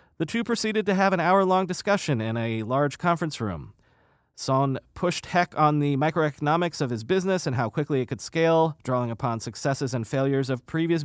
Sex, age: male, 30-49